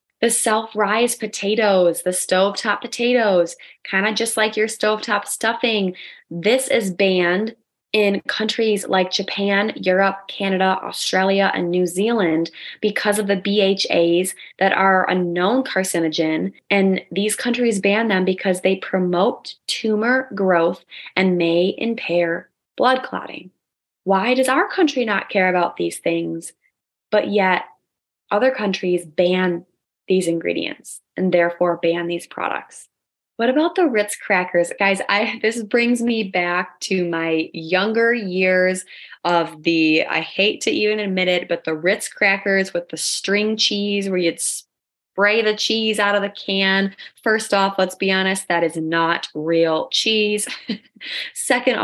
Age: 20-39